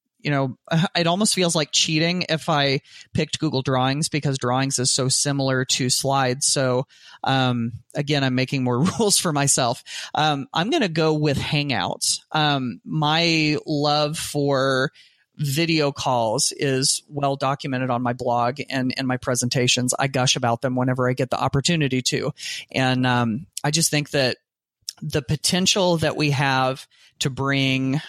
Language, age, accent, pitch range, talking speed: English, 30-49, American, 130-150 Hz, 155 wpm